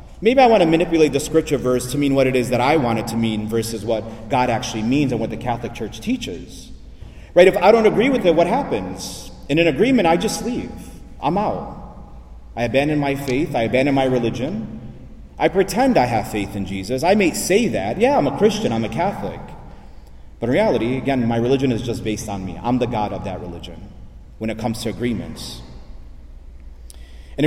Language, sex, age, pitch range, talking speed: English, male, 30-49, 100-140 Hz, 210 wpm